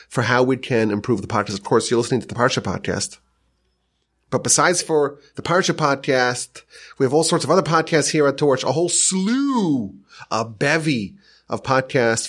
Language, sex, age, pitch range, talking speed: English, male, 30-49, 105-160 Hz, 185 wpm